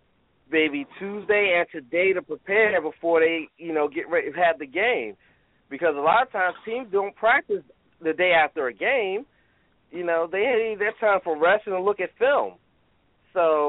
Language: English